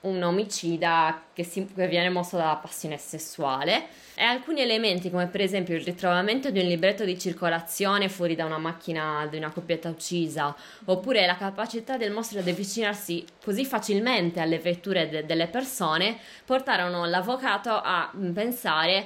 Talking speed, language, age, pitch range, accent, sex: 155 wpm, Italian, 20-39, 170-210 Hz, native, female